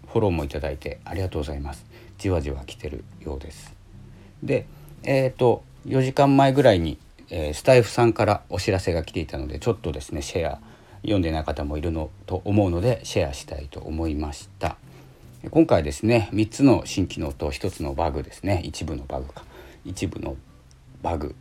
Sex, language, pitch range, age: male, Japanese, 75-105 Hz, 40-59